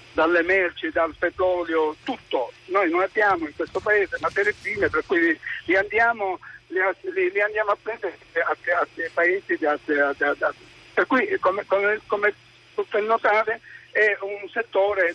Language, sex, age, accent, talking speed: Italian, male, 60-79, native, 145 wpm